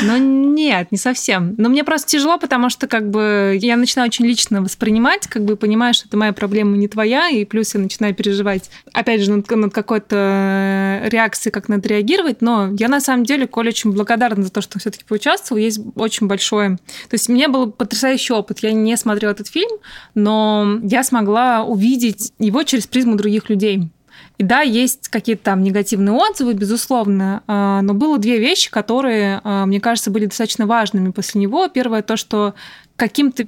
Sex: female